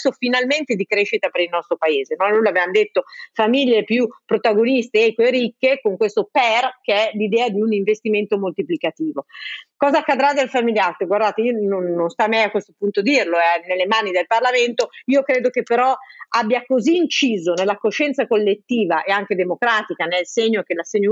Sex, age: female, 40-59